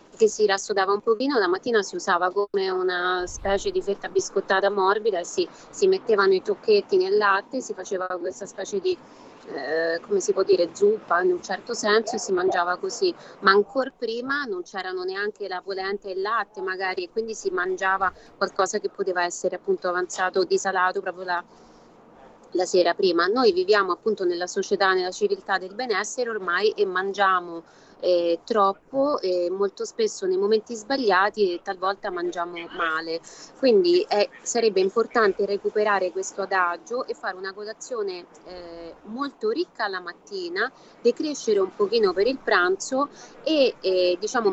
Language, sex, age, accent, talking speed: Italian, female, 30-49, native, 160 wpm